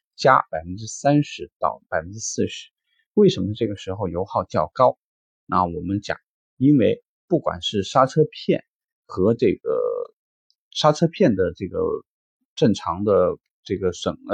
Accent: native